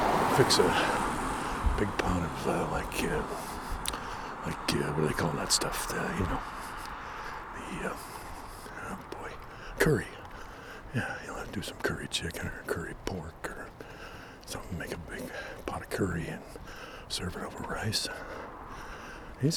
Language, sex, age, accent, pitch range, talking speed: English, male, 60-79, American, 80-100 Hz, 150 wpm